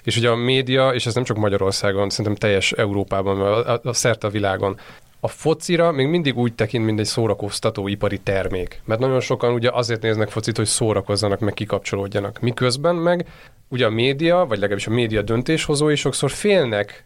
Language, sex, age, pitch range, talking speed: Hungarian, male, 30-49, 105-130 Hz, 185 wpm